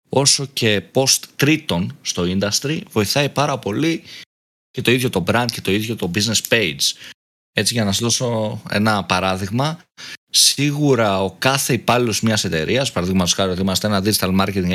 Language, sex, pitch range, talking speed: Greek, male, 95-135 Hz, 165 wpm